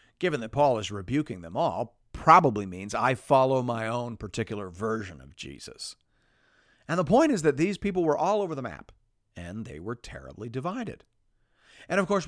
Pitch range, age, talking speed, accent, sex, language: 105-155 Hz, 50-69, 180 wpm, American, male, English